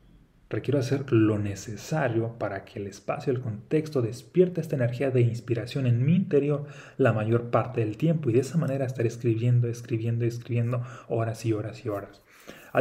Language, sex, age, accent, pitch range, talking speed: Spanish, male, 30-49, Mexican, 110-135 Hz, 175 wpm